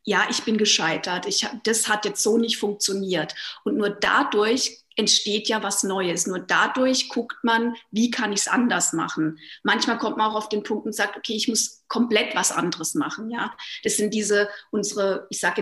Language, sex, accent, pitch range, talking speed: German, female, German, 205-245 Hz, 190 wpm